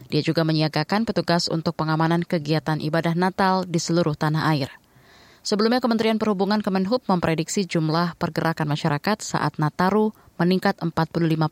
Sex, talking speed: female, 130 wpm